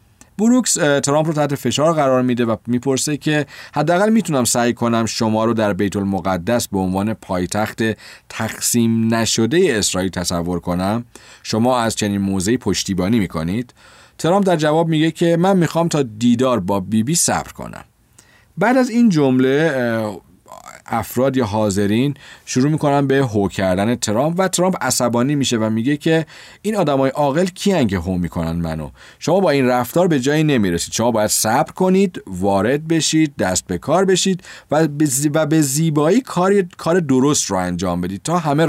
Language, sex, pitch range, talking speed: Persian, male, 105-160 Hz, 160 wpm